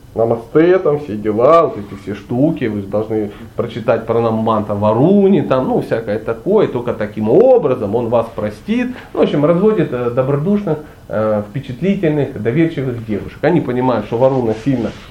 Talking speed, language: 150 wpm, Russian